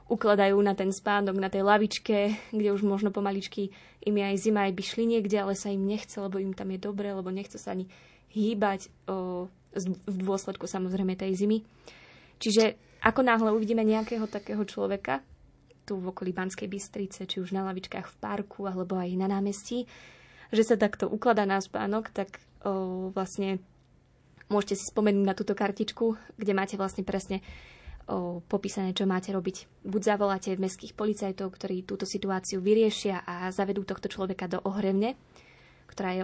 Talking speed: 165 wpm